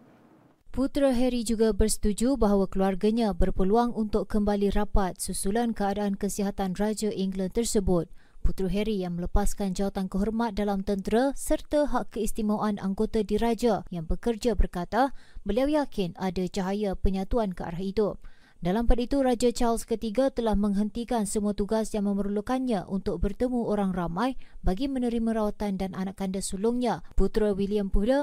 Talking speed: 140 wpm